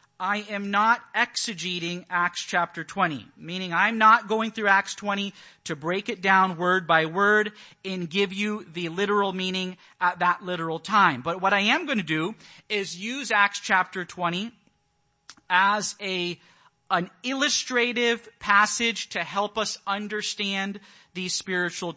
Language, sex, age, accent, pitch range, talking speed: English, male, 40-59, American, 170-210 Hz, 150 wpm